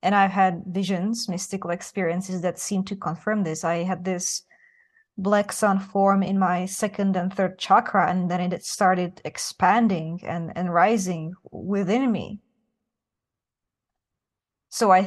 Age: 20-39